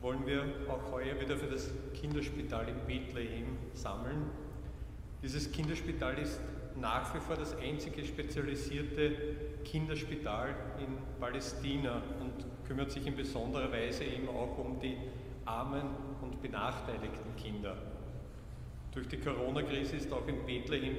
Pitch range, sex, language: 120-140 Hz, male, German